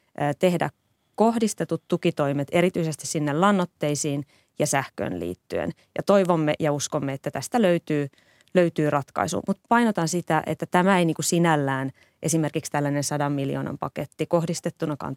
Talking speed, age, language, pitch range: 125 wpm, 20-39, Finnish, 150-175 Hz